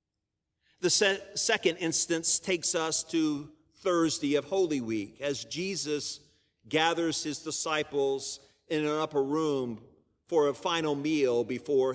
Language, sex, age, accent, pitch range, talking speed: English, male, 50-69, American, 125-170 Hz, 120 wpm